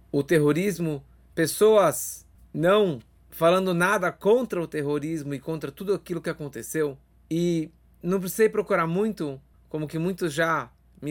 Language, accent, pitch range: Portuguese, Brazilian, 150-210 Hz